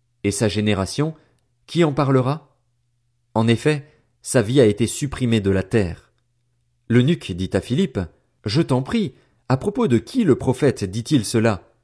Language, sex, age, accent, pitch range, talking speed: French, male, 40-59, French, 110-135 Hz, 165 wpm